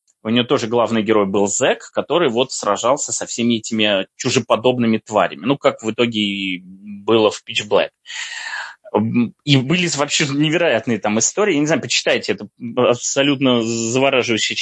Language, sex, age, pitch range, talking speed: Russian, male, 20-39, 110-135 Hz, 150 wpm